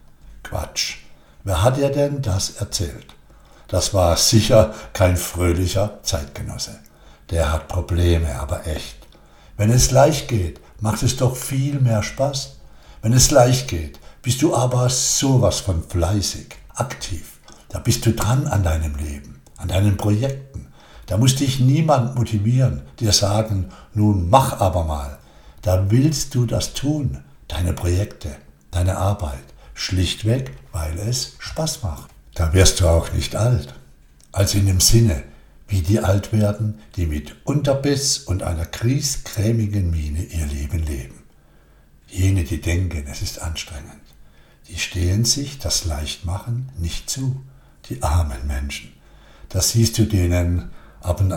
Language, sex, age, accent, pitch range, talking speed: German, male, 60-79, German, 80-115 Hz, 140 wpm